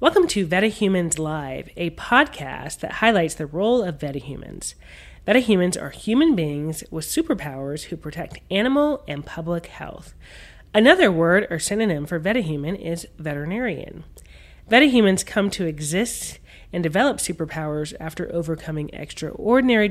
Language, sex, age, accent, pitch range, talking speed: English, female, 30-49, American, 155-205 Hz, 125 wpm